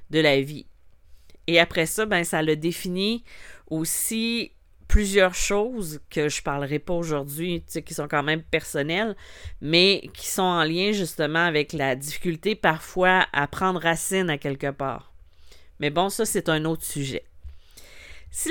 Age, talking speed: 40-59, 160 wpm